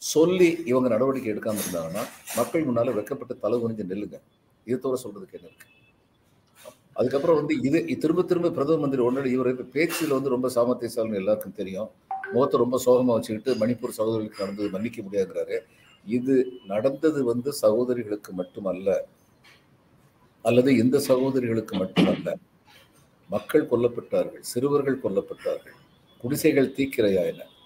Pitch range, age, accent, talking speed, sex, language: 115-165 Hz, 50-69, native, 115 wpm, male, Tamil